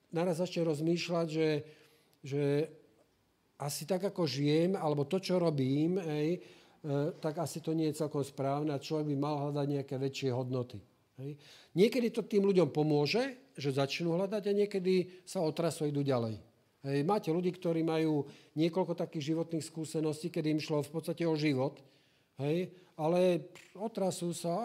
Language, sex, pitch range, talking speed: Slovak, male, 145-180 Hz, 155 wpm